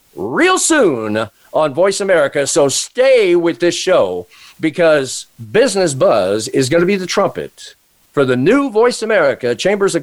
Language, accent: English, American